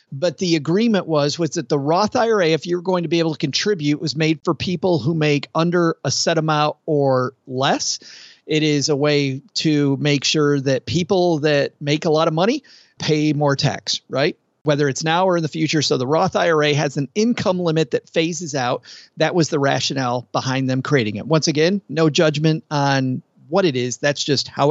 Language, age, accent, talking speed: English, 40-59, American, 205 wpm